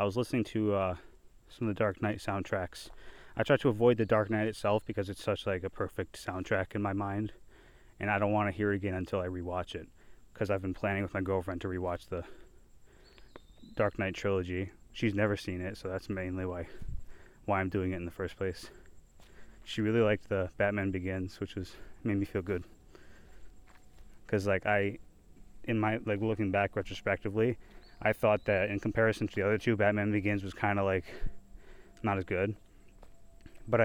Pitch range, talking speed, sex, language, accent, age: 95-110 Hz, 195 wpm, male, English, American, 20-39